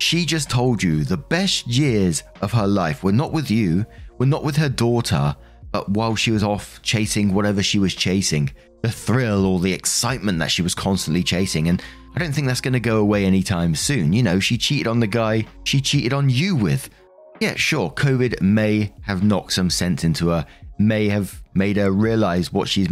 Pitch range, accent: 90-115 Hz, British